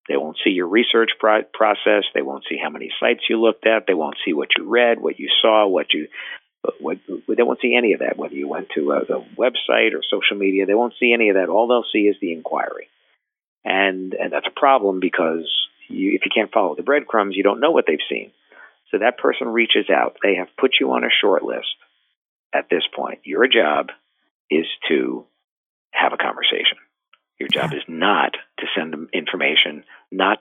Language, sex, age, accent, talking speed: English, male, 50-69, American, 215 wpm